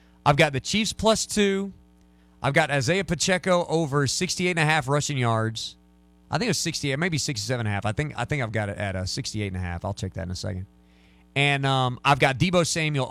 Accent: American